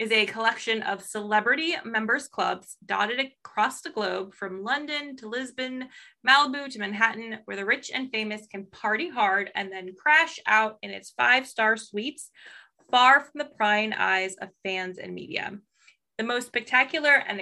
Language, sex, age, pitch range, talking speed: English, female, 20-39, 205-255 Hz, 160 wpm